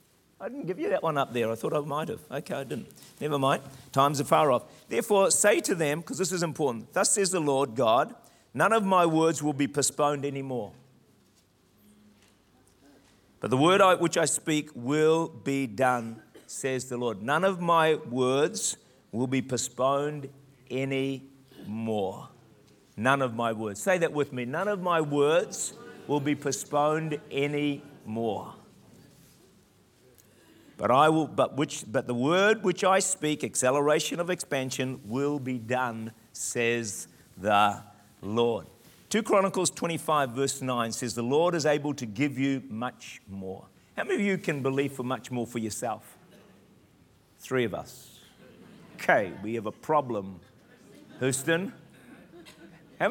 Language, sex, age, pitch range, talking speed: English, male, 50-69, 125-160 Hz, 155 wpm